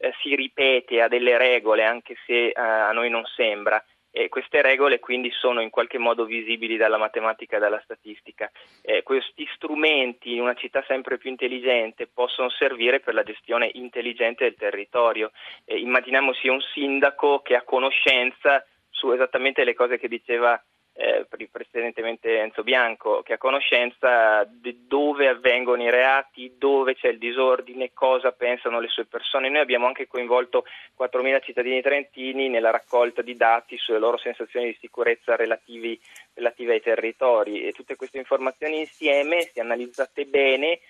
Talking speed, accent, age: 150 wpm, native, 20-39